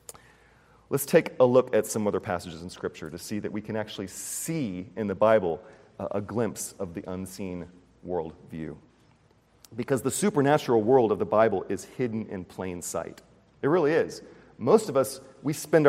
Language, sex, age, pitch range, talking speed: English, male, 40-59, 105-135 Hz, 175 wpm